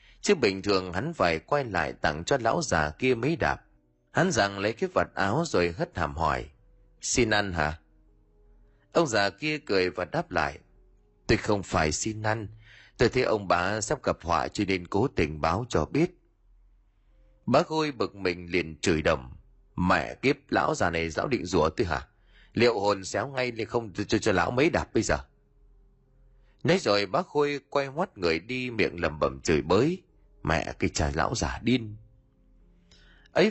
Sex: male